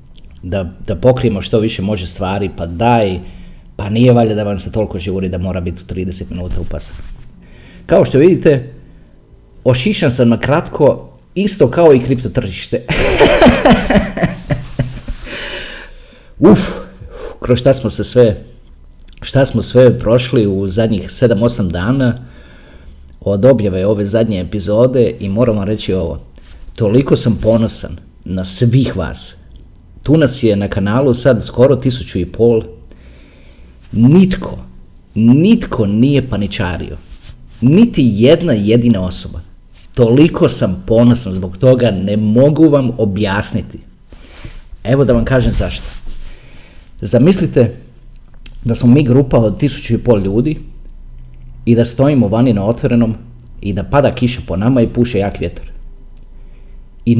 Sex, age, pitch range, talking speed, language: male, 40-59, 90-125 Hz, 125 wpm, Croatian